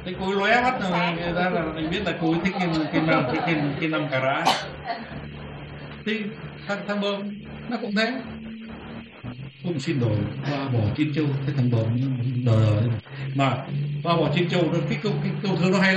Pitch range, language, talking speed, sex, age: 130-175 Hz, Vietnamese, 165 wpm, male, 60-79